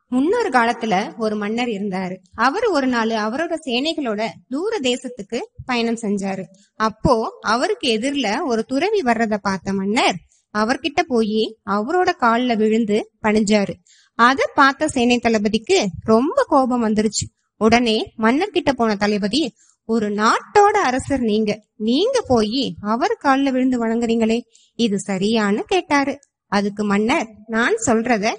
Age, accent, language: 20-39, native, Tamil